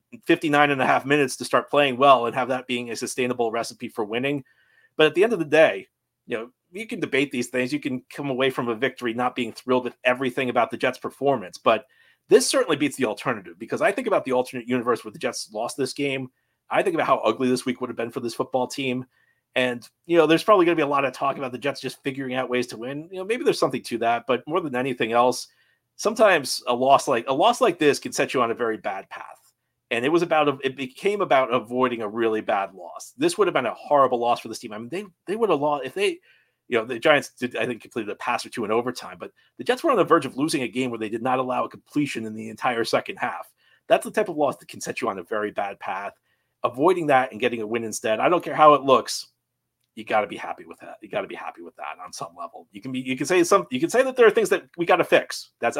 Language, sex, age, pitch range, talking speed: English, male, 30-49, 125-150 Hz, 275 wpm